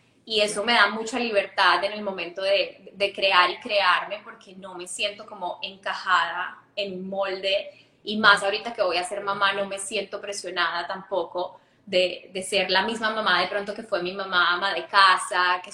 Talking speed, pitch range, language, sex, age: 200 wpm, 185-220 Hz, Spanish, female, 10-29